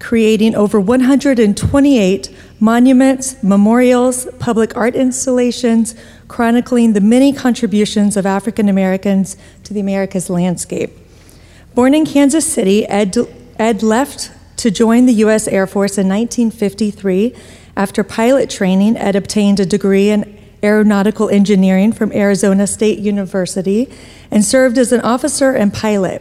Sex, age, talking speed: female, 40-59, 125 wpm